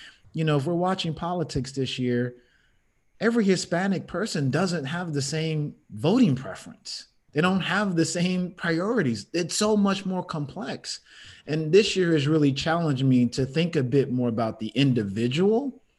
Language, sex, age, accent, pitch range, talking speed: English, male, 30-49, American, 115-160 Hz, 160 wpm